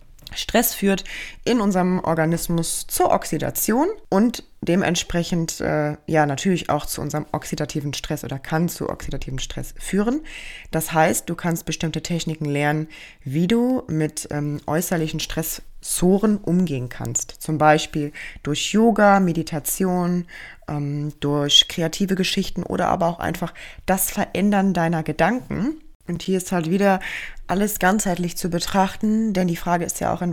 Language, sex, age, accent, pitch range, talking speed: German, female, 20-39, German, 160-185 Hz, 140 wpm